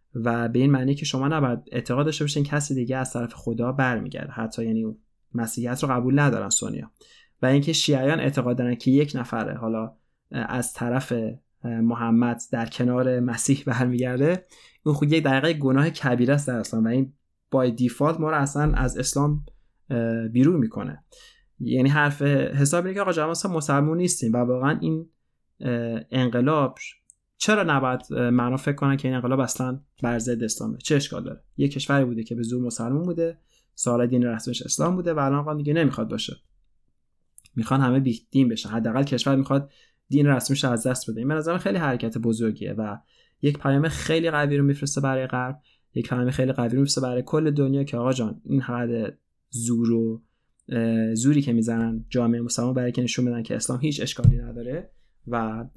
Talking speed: 175 wpm